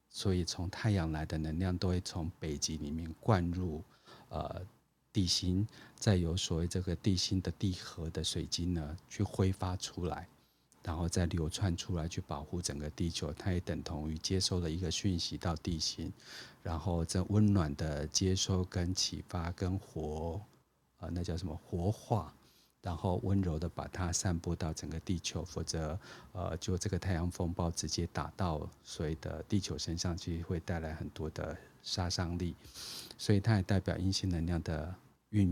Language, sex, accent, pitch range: Chinese, male, native, 80-95 Hz